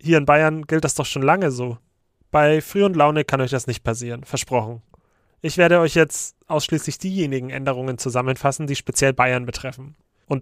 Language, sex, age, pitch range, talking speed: German, male, 30-49, 130-160 Hz, 185 wpm